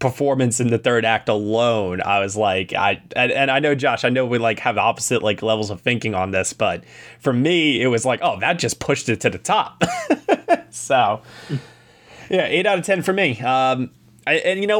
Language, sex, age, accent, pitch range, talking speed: English, male, 20-39, American, 110-140 Hz, 215 wpm